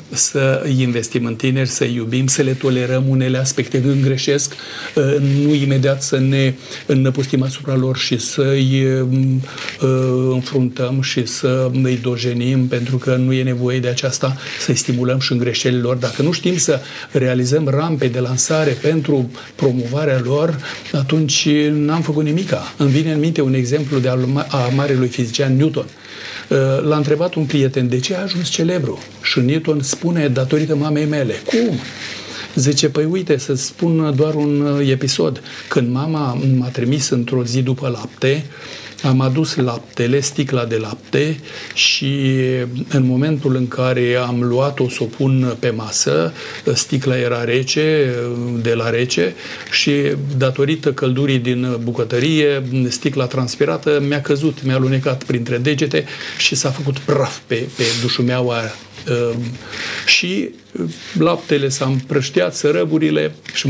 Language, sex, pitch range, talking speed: Romanian, male, 125-145 Hz, 140 wpm